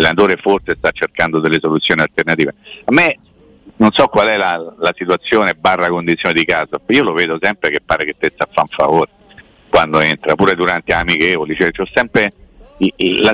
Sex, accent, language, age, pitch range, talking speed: male, native, Italian, 50-69, 90-125 Hz, 200 wpm